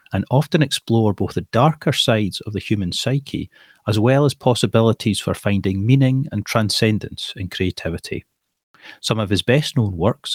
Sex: male